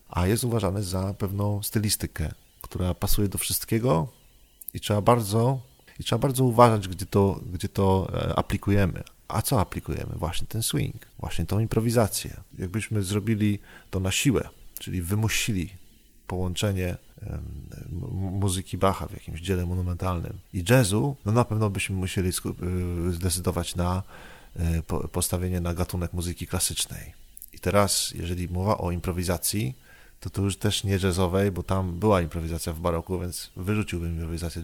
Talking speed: 135 wpm